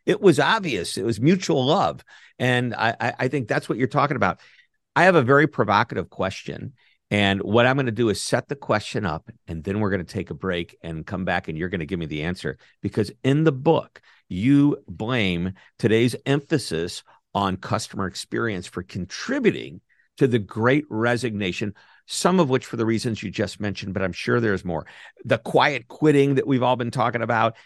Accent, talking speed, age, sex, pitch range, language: American, 200 wpm, 50-69, male, 95-135 Hz, English